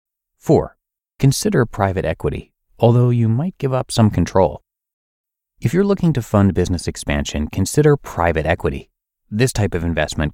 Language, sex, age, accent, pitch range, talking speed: English, male, 30-49, American, 85-125 Hz, 145 wpm